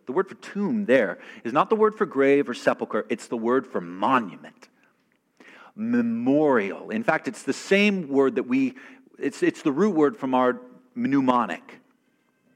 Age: 40-59